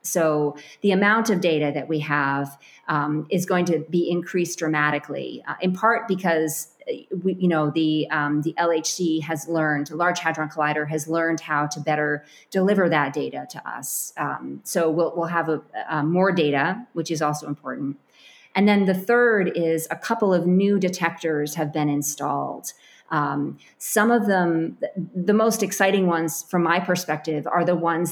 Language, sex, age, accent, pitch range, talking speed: English, female, 30-49, American, 155-190 Hz, 175 wpm